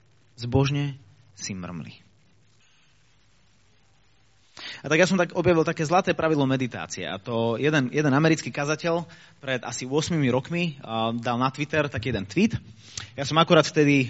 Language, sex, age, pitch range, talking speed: Slovak, male, 30-49, 110-140 Hz, 140 wpm